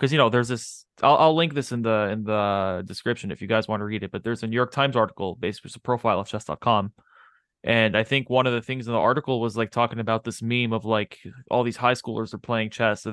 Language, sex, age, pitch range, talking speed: English, male, 20-39, 105-125 Hz, 275 wpm